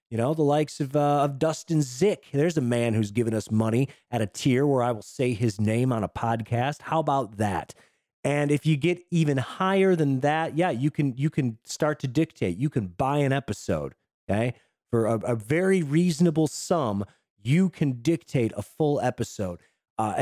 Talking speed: 195 wpm